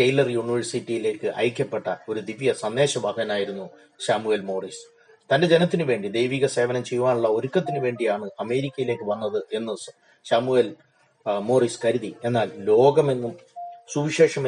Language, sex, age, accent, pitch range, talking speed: Malayalam, male, 30-49, native, 115-155 Hz, 100 wpm